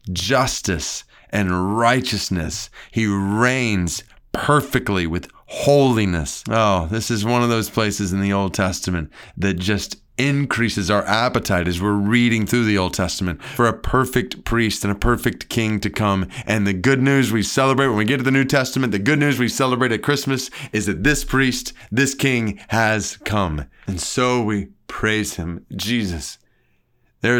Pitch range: 110-140 Hz